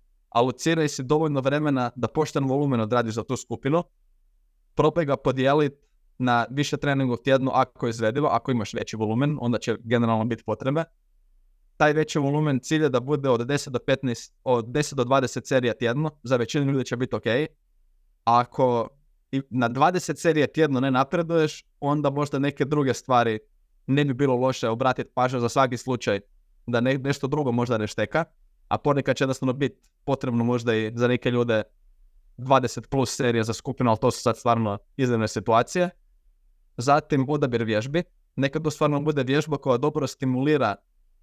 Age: 20-39